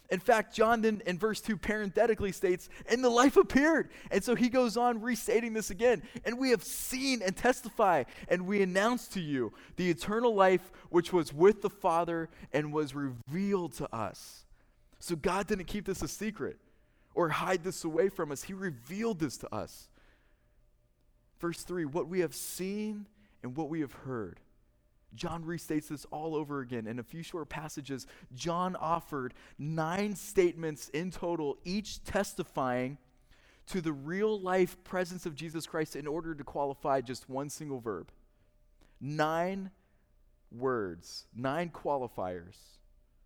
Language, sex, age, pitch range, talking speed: English, male, 20-39, 140-195 Hz, 155 wpm